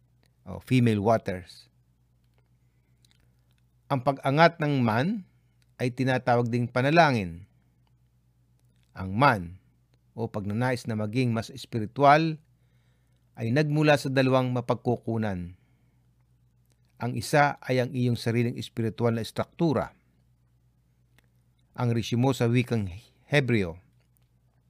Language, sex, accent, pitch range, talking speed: Filipino, male, native, 105-130 Hz, 90 wpm